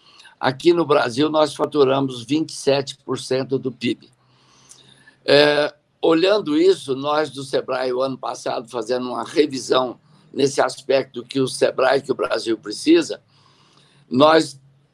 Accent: Brazilian